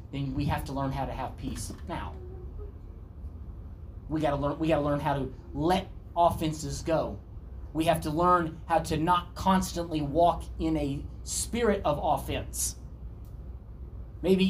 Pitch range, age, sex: 95-155 Hz, 30-49, male